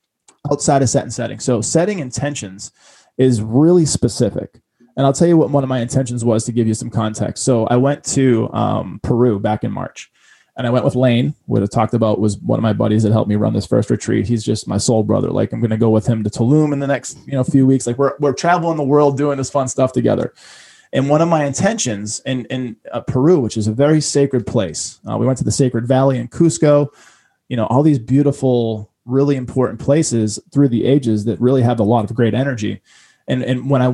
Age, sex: 20-39, male